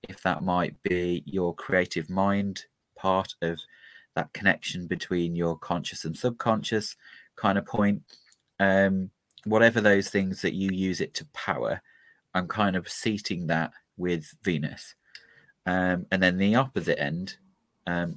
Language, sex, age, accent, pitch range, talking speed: English, male, 30-49, British, 85-100 Hz, 140 wpm